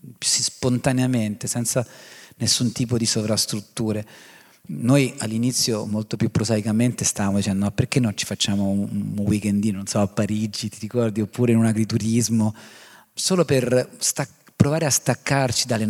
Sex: male